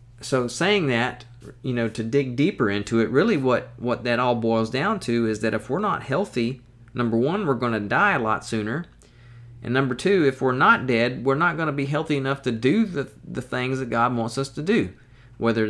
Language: English